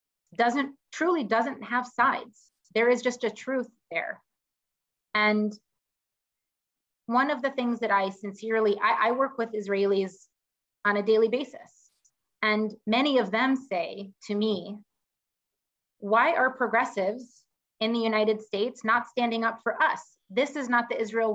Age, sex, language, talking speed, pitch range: 30-49, female, English, 145 wpm, 210-250 Hz